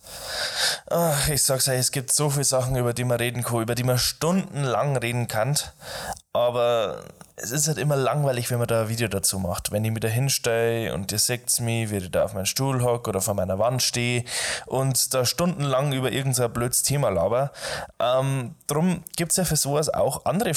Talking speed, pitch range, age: 205 wpm, 120-150 Hz, 20-39